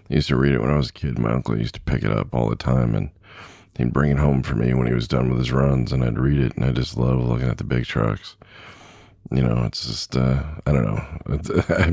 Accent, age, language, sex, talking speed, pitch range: American, 40-59, English, male, 280 wpm, 65-85 Hz